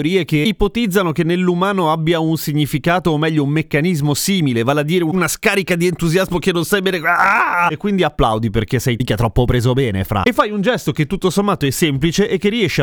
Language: Italian